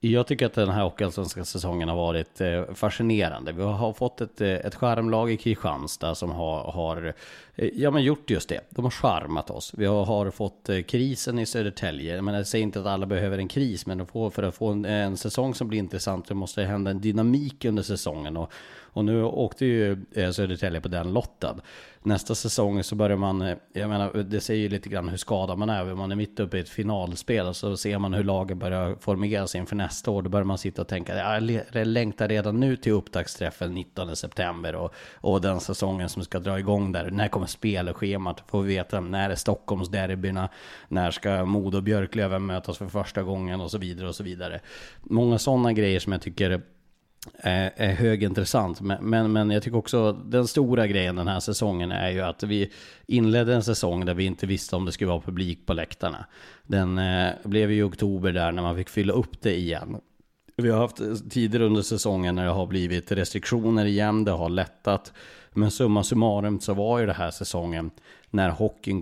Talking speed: 205 wpm